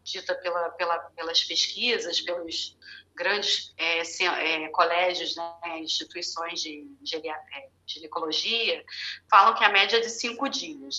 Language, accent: Portuguese, Brazilian